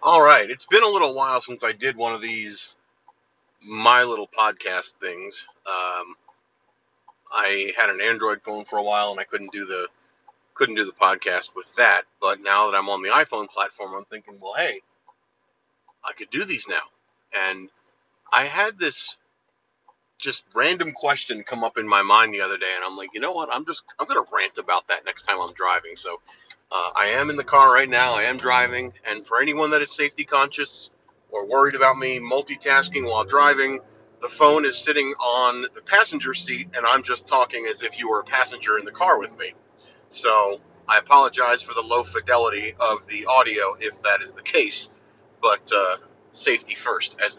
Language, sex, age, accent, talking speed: English, male, 30-49, American, 195 wpm